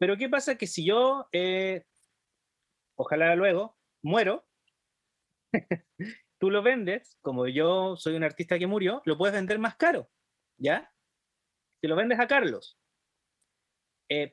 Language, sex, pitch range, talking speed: Spanish, male, 155-220 Hz, 140 wpm